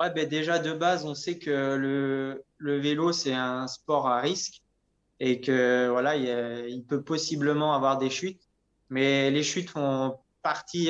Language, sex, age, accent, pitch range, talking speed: French, male, 20-39, French, 130-155 Hz, 175 wpm